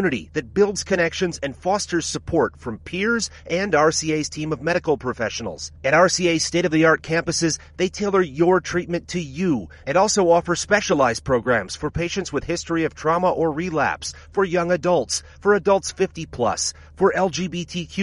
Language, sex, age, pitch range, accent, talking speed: Italian, male, 30-49, 140-180 Hz, American, 155 wpm